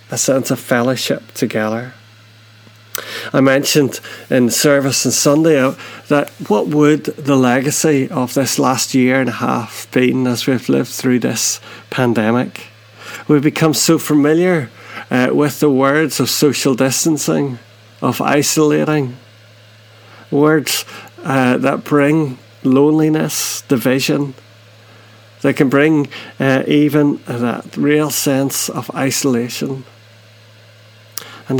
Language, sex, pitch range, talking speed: English, male, 115-145 Hz, 115 wpm